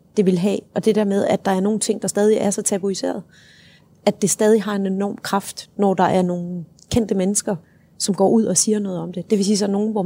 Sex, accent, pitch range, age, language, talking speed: female, native, 185-215 Hz, 30-49, Danish, 270 wpm